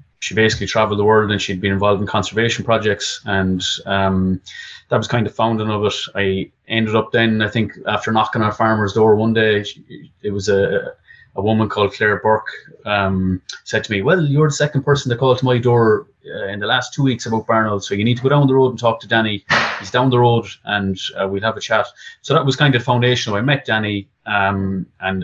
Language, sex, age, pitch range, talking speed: English, male, 30-49, 105-120 Hz, 240 wpm